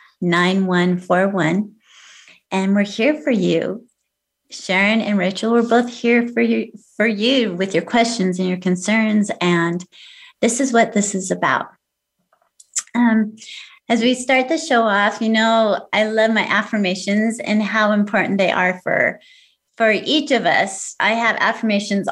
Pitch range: 190-240 Hz